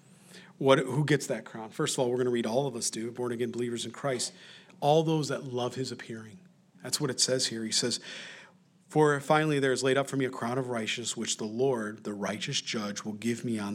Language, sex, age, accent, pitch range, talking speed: English, male, 40-59, American, 115-180 Hz, 235 wpm